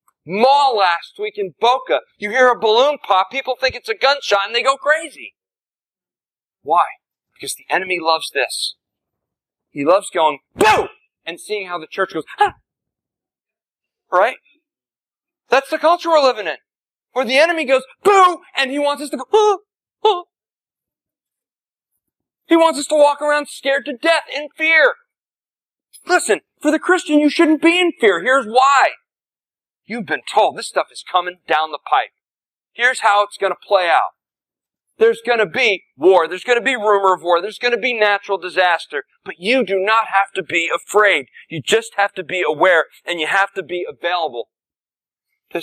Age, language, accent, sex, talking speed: 40-59, English, American, male, 175 wpm